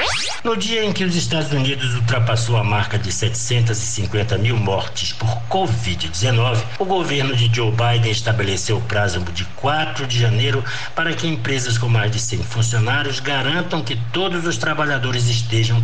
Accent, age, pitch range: Brazilian, 60-79, 105-130 Hz